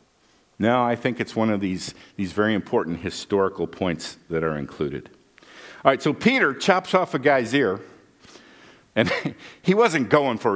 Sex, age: male, 50-69